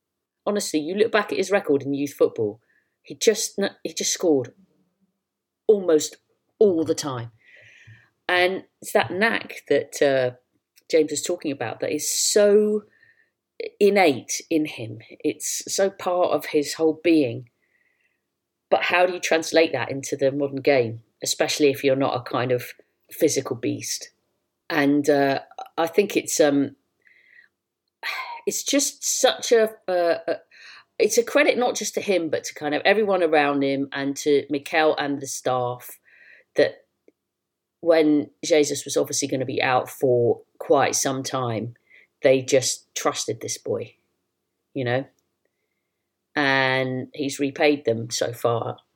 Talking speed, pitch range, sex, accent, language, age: 145 wpm, 135-210 Hz, female, British, English, 40-59